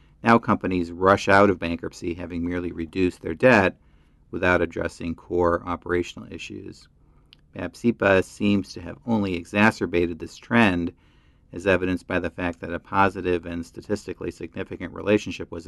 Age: 50-69